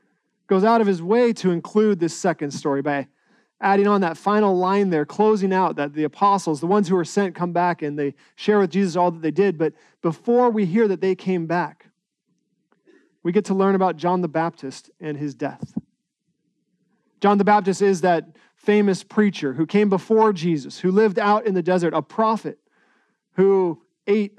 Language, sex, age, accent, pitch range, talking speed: English, male, 40-59, American, 170-215 Hz, 190 wpm